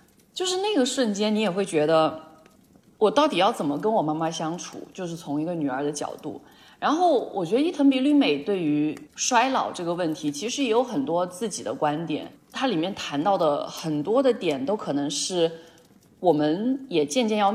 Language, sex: Chinese, female